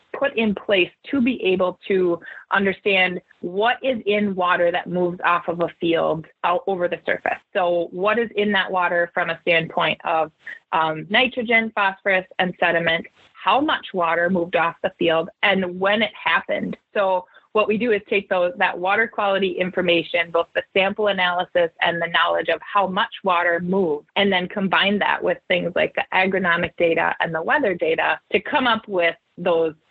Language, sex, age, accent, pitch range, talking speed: English, female, 20-39, American, 175-210 Hz, 180 wpm